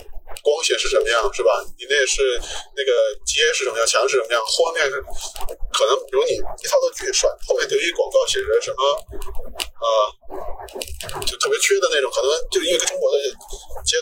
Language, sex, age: Chinese, male, 20-39